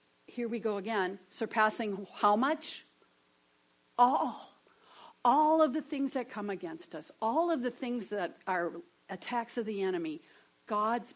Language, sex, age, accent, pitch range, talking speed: English, female, 50-69, American, 185-275 Hz, 145 wpm